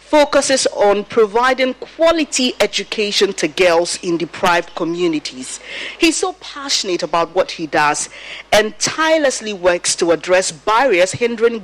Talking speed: 125 wpm